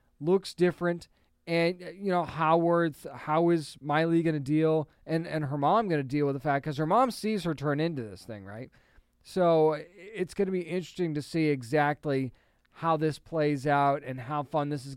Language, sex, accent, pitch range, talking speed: English, male, American, 145-180 Hz, 200 wpm